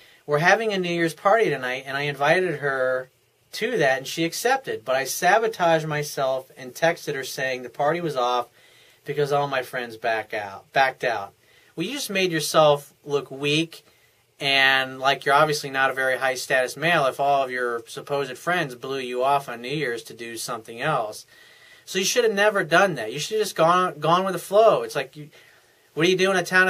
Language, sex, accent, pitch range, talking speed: English, male, American, 135-185 Hz, 215 wpm